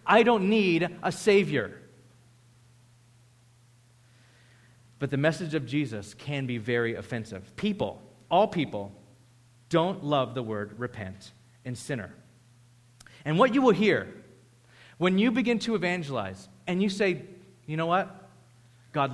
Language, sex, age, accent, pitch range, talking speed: English, male, 30-49, American, 120-185 Hz, 130 wpm